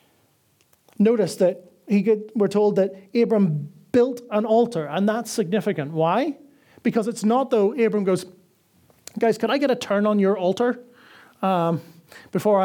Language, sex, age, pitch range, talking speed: English, male, 30-49, 195-245 Hz, 150 wpm